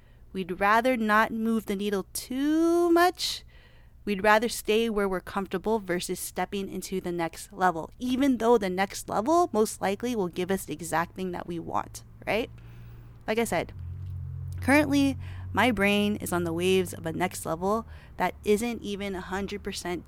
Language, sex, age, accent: English, female, 30-49, American